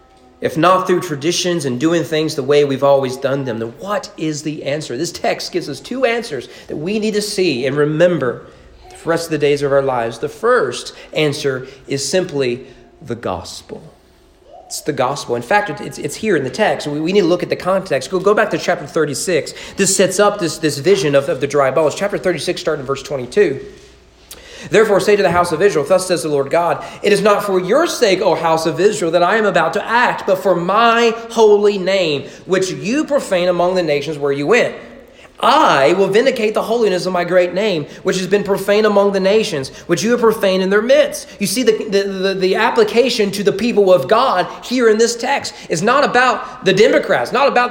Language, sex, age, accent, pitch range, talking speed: English, male, 40-59, American, 155-215 Hz, 215 wpm